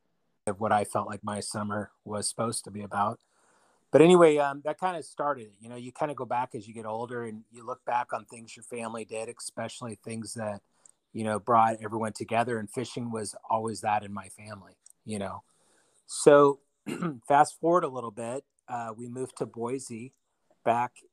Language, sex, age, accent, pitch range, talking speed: English, male, 30-49, American, 110-130 Hz, 195 wpm